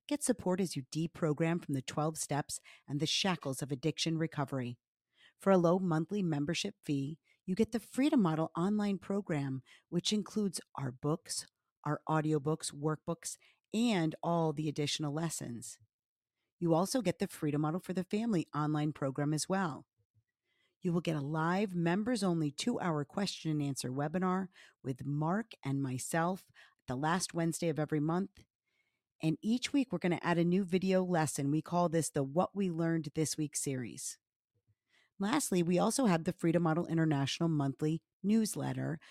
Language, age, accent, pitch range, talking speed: English, 50-69, American, 145-190 Hz, 165 wpm